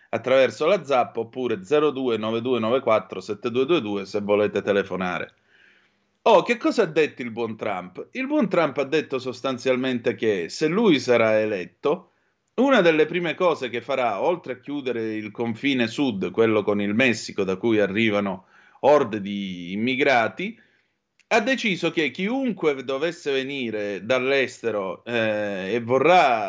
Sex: male